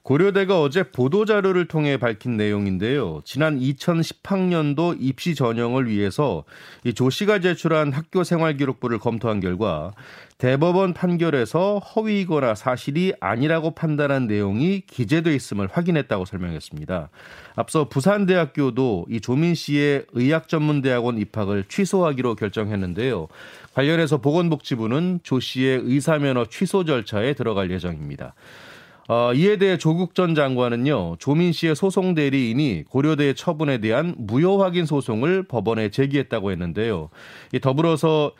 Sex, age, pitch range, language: male, 30-49, 120-170 Hz, Korean